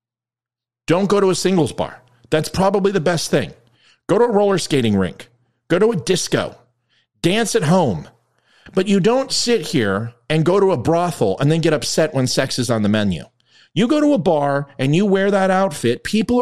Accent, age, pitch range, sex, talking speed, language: American, 40-59, 130-215 Hz, male, 200 wpm, English